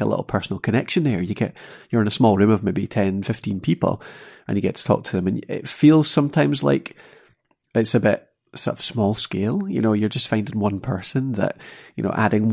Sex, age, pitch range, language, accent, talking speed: male, 30-49, 105-130 Hz, English, British, 220 wpm